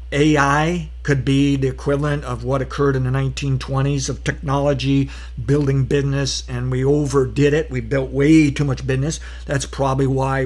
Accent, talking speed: American, 160 wpm